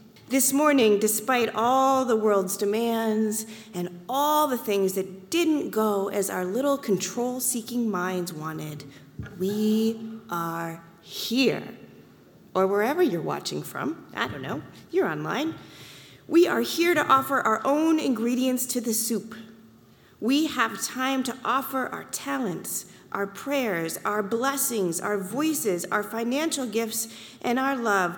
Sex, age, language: female, 40-59, English